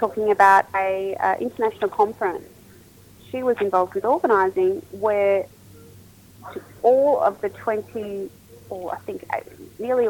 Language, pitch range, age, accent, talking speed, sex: English, 185-255 Hz, 30-49, Australian, 125 wpm, female